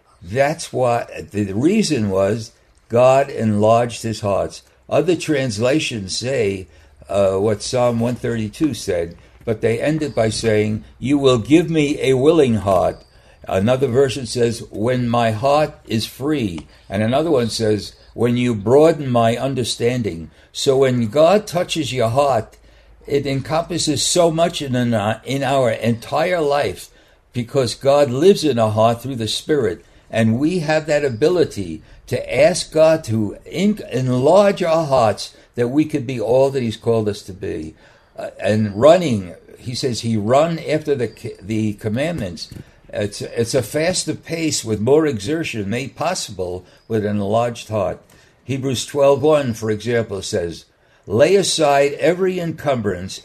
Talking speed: 145 wpm